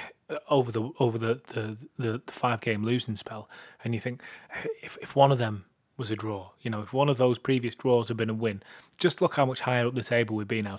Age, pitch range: 20-39, 115-135 Hz